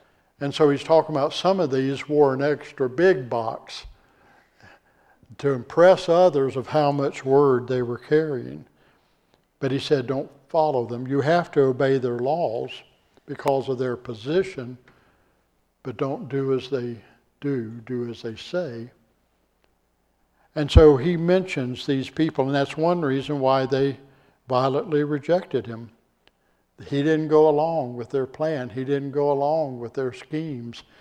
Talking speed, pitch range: 150 wpm, 125-150 Hz